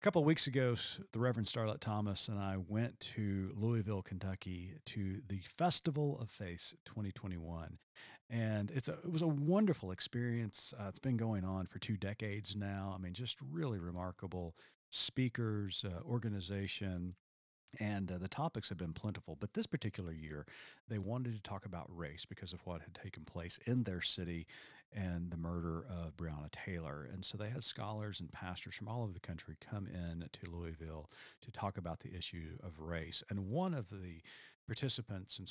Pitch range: 85-110 Hz